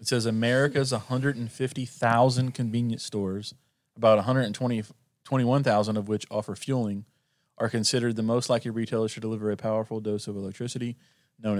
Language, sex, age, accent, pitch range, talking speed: English, male, 30-49, American, 110-125 Hz, 135 wpm